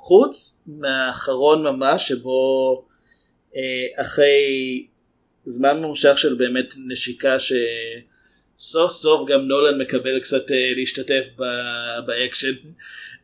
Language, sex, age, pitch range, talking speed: Hebrew, male, 30-49, 125-155 Hz, 80 wpm